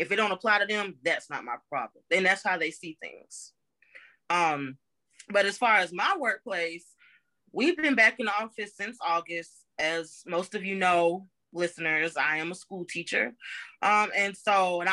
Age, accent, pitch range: 20-39, American, 160-195 Hz